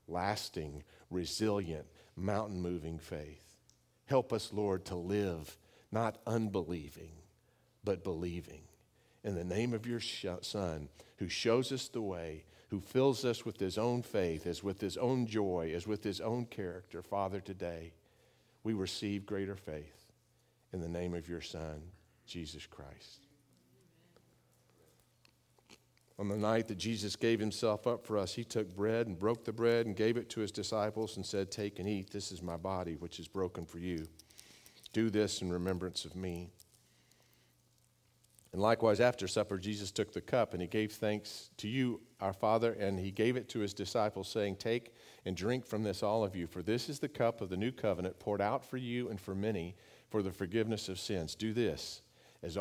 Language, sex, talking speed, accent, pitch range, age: English, male, 175 wpm, American, 90-110 Hz, 50-69